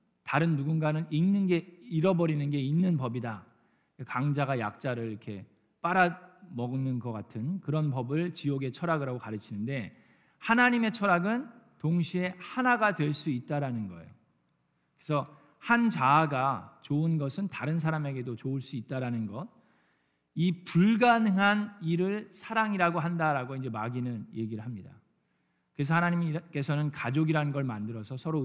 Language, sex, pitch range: Korean, male, 125-180 Hz